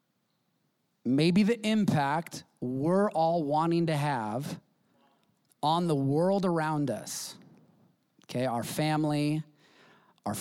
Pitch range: 145-185 Hz